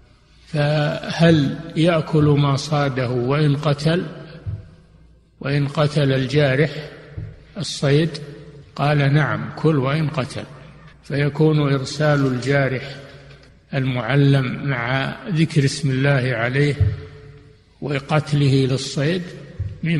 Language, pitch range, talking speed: Arabic, 130-155 Hz, 80 wpm